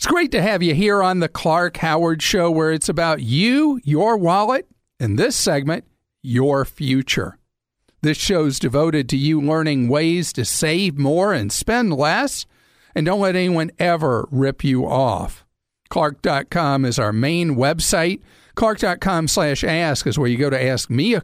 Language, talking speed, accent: English, 165 wpm, American